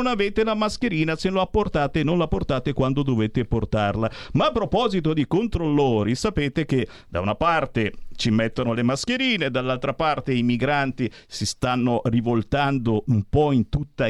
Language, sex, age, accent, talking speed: Italian, male, 50-69, native, 160 wpm